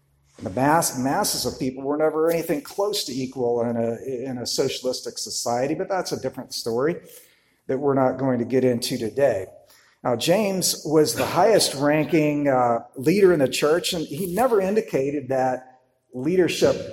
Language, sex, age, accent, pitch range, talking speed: English, male, 50-69, American, 115-145 Hz, 150 wpm